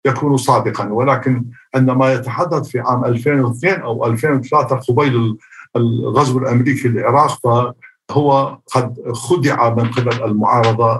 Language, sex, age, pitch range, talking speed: Arabic, male, 50-69, 120-135 Hz, 120 wpm